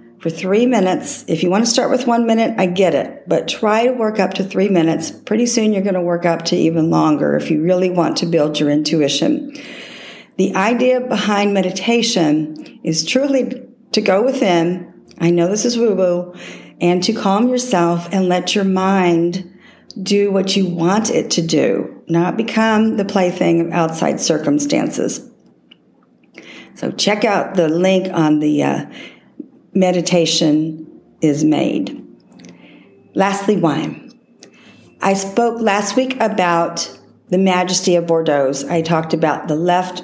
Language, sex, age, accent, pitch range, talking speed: English, female, 50-69, American, 170-220 Hz, 155 wpm